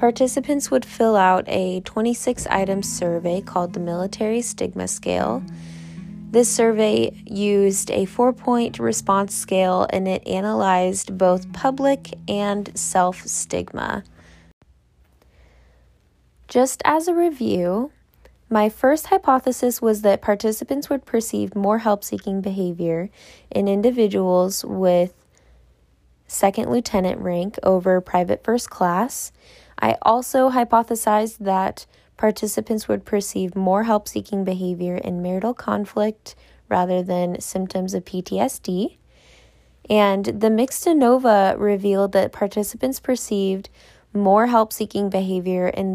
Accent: American